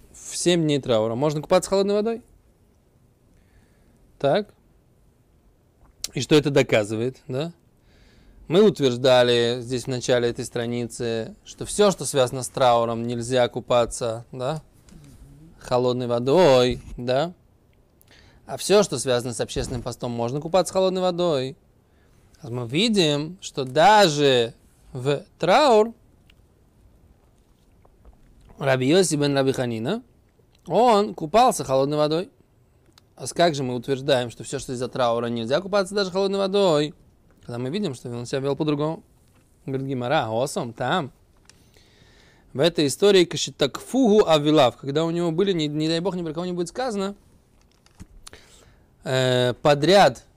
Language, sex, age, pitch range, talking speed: Russian, male, 20-39, 125-165 Hz, 125 wpm